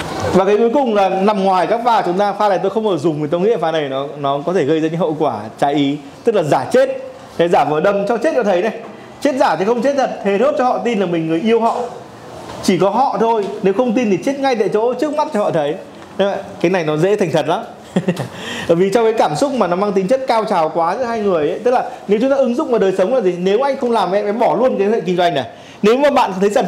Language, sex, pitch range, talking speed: Vietnamese, male, 175-240 Hz, 305 wpm